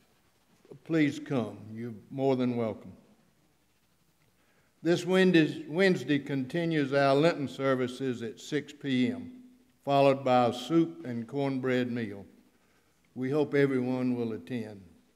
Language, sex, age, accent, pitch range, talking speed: English, male, 60-79, American, 125-150 Hz, 105 wpm